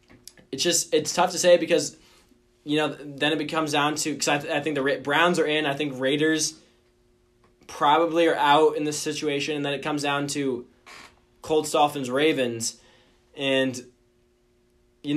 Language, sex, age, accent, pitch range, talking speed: English, male, 20-39, American, 125-155 Hz, 165 wpm